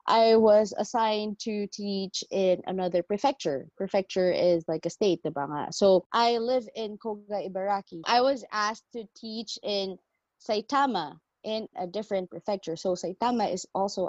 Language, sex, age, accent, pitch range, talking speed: Filipino, female, 20-39, native, 185-235 Hz, 150 wpm